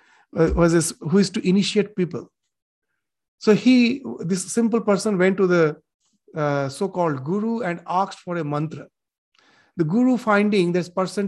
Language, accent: English, Indian